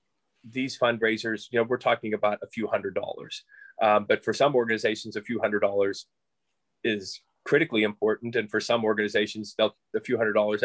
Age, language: 30-49, English